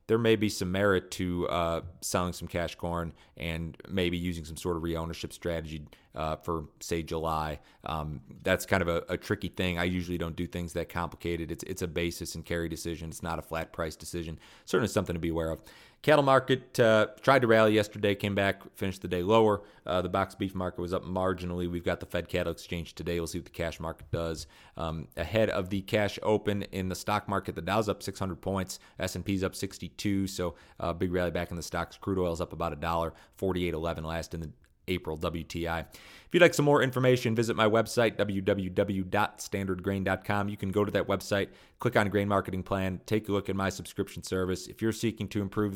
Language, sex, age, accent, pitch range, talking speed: English, male, 30-49, American, 85-100 Hz, 220 wpm